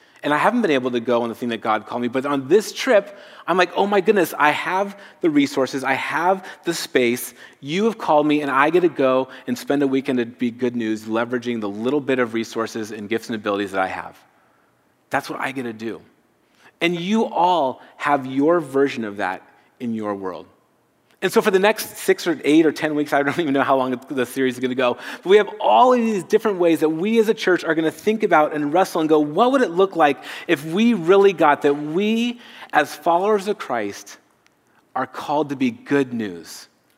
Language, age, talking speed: English, 30-49, 235 wpm